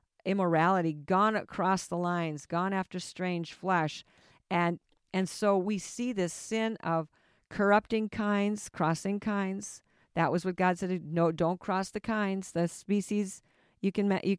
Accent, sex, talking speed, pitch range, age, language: American, female, 150 wpm, 160-195 Hz, 50-69, English